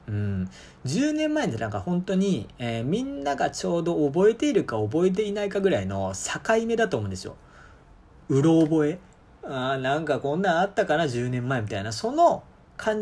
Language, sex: Japanese, male